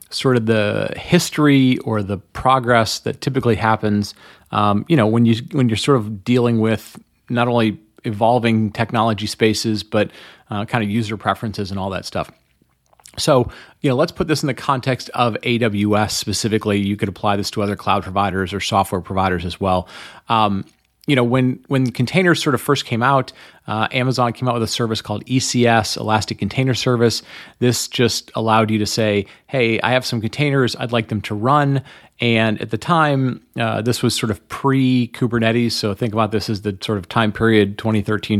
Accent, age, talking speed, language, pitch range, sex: American, 30-49, 190 wpm, English, 105-125 Hz, male